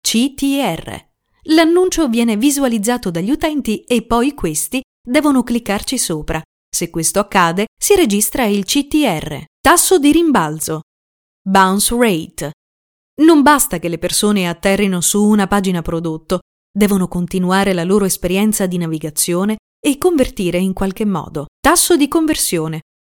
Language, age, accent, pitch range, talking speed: Italian, 30-49, native, 180-275 Hz, 125 wpm